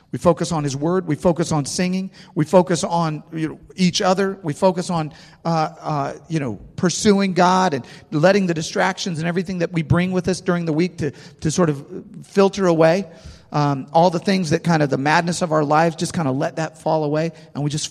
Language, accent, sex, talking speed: English, American, male, 225 wpm